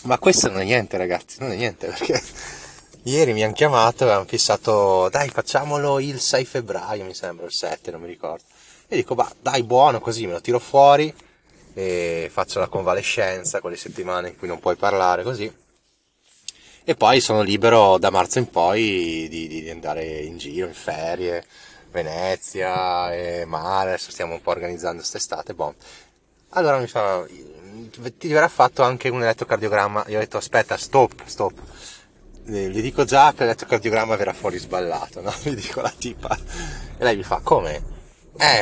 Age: 20-39